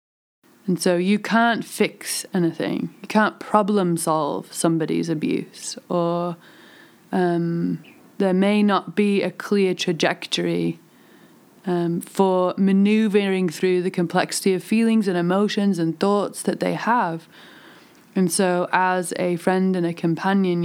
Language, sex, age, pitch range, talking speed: English, female, 20-39, 175-215 Hz, 130 wpm